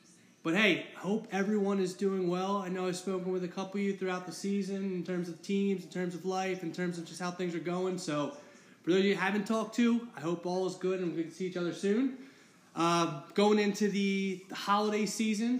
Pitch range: 170-200 Hz